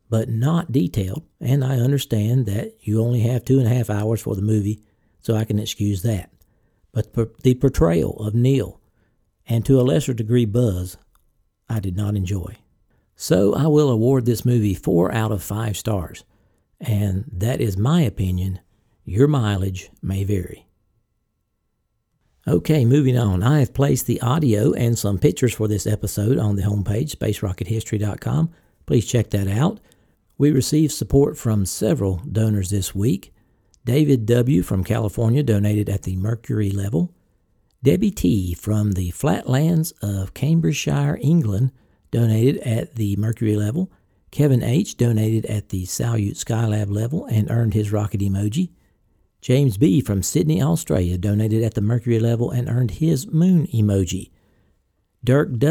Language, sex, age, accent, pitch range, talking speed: English, male, 60-79, American, 100-130 Hz, 150 wpm